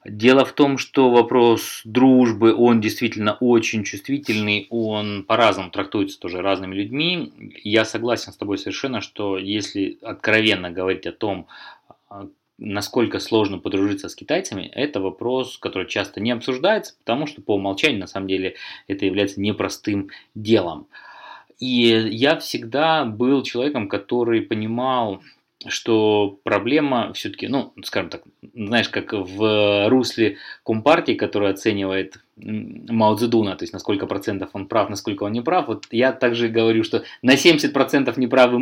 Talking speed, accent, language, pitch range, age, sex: 140 wpm, native, Russian, 100-125 Hz, 20-39, male